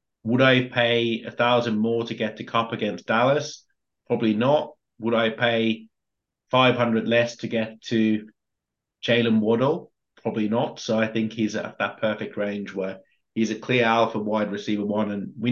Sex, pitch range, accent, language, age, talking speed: male, 110-125 Hz, British, English, 30-49, 170 wpm